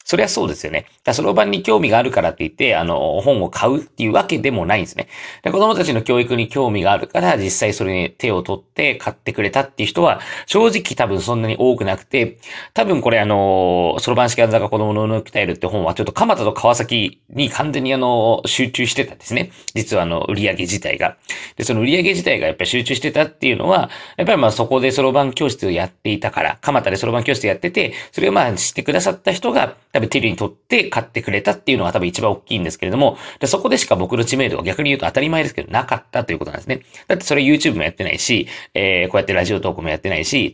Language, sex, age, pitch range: Japanese, male, 40-59, 95-135 Hz